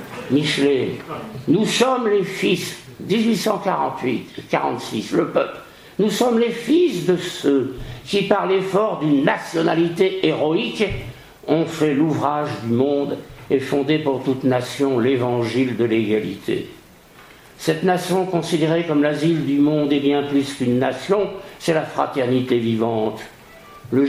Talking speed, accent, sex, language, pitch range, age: 125 wpm, French, male, French, 125-165 Hz, 60-79